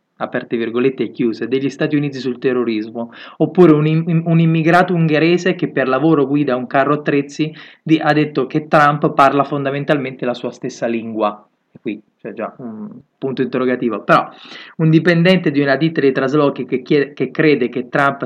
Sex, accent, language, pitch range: male, native, Italian, 130-165 Hz